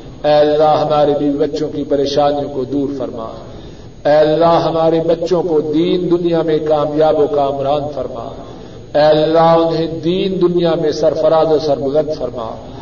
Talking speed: 150 wpm